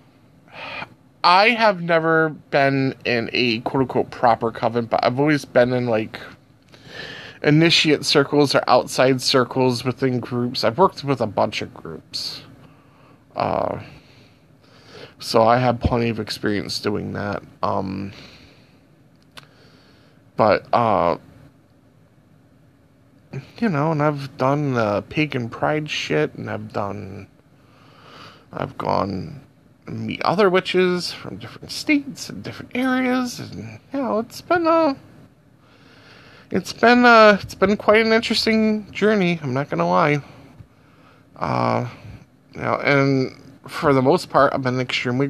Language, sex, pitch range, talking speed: English, male, 120-150 Hz, 125 wpm